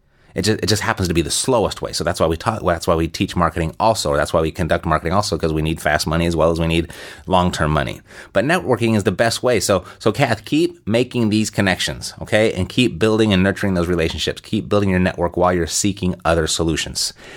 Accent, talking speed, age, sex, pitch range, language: American, 240 wpm, 30-49, male, 85-110 Hz, English